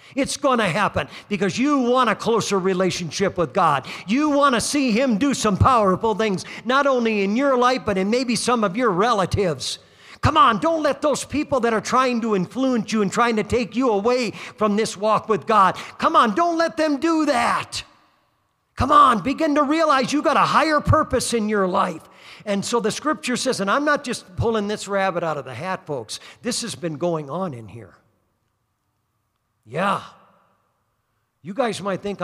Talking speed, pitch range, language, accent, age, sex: 195 wpm, 165-235 Hz, English, American, 50-69, male